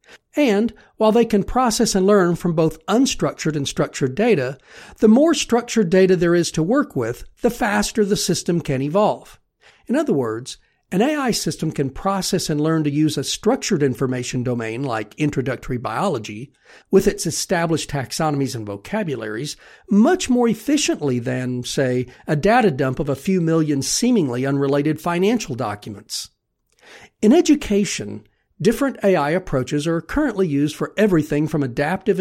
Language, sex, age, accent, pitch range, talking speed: English, male, 50-69, American, 140-210 Hz, 150 wpm